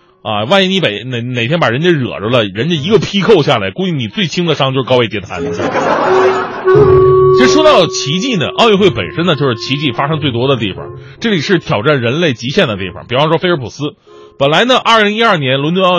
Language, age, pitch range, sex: Chinese, 30-49, 140-200 Hz, male